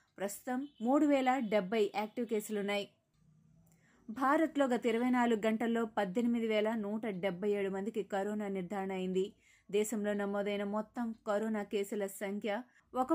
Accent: native